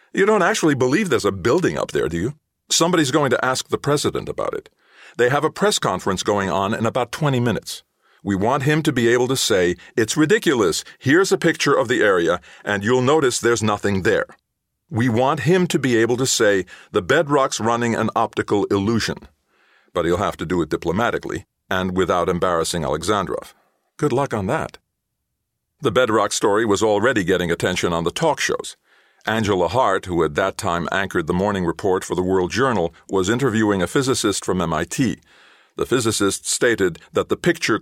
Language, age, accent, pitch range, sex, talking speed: English, 50-69, American, 100-145 Hz, male, 185 wpm